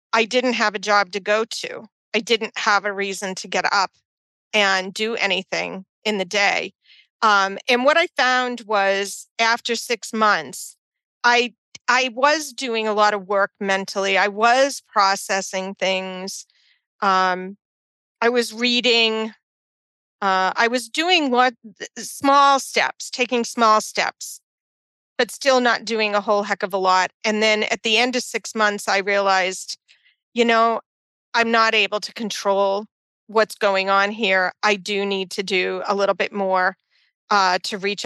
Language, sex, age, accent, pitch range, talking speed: English, female, 40-59, American, 195-230 Hz, 160 wpm